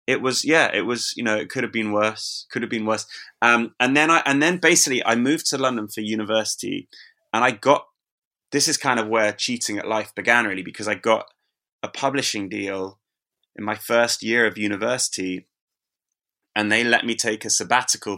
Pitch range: 100-115 Hz